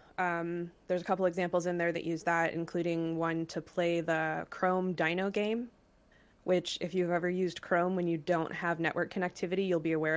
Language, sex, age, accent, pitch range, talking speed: English, female, 20-39, American, 155-175 Hz, 195 wpm